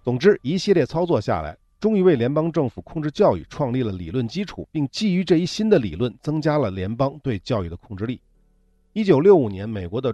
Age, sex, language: 50-69, male, Chinese